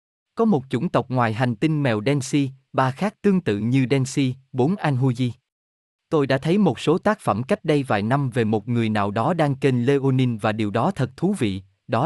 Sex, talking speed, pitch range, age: male, 215 wpm, 110-150 Hz, 20-39